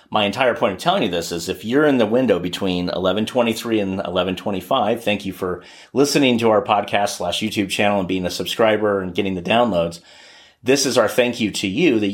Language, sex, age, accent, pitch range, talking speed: English, male, 30-49, American, 95-115 Hz, 215 wpm